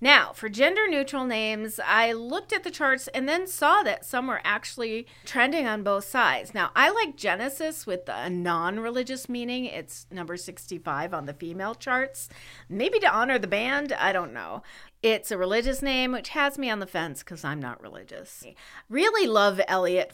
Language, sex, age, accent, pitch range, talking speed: English, female, 40-59, American, 170-280 Hz, 180 wpm